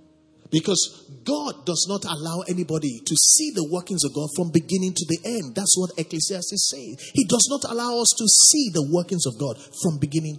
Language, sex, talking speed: English, male, 200 wpm